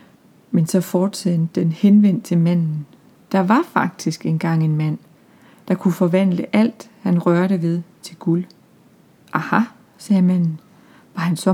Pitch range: 170-210 Hz